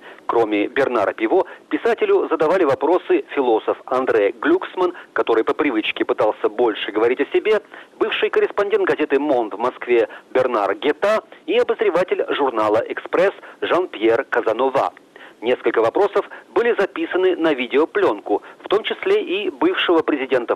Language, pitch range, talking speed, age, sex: Russian, 345-435 Hz, 125 wpm, 40-59, male